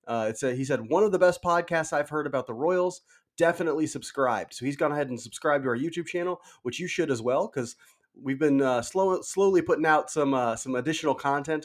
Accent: American